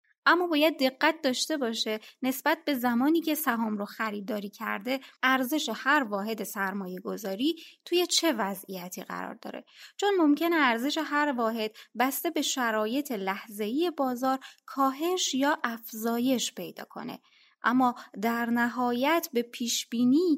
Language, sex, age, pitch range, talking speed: Persian, female, 20-39, 215-285 Hz, 125 wpm